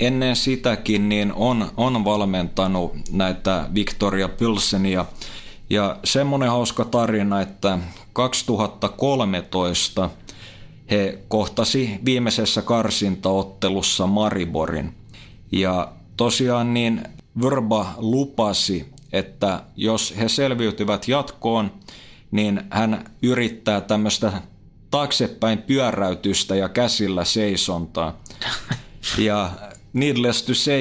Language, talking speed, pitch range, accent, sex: Finnish, 85 wpm, 100-120 Hz, native, male